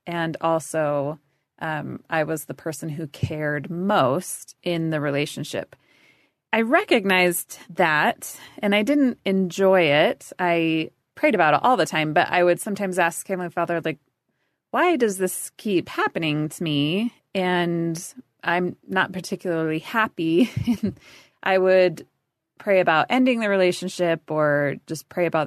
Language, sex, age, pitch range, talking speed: English, female, 30-49, 150-190 Hz, 140 wpm